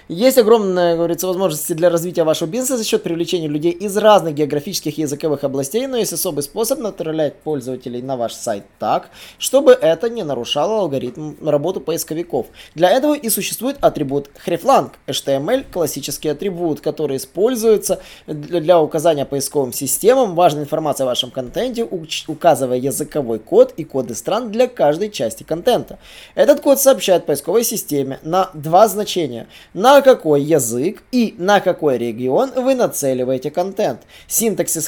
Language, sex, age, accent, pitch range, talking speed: Russian, male, 20-39, native, 145-210 Hz, 150 wpm